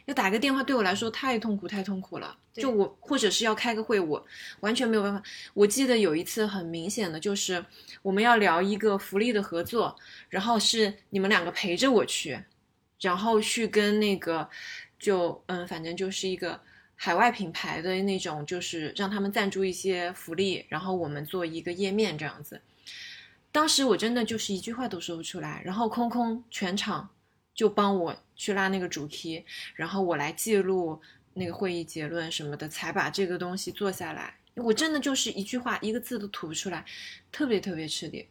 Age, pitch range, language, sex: 20-39, 175-225 Hz, Chinese, female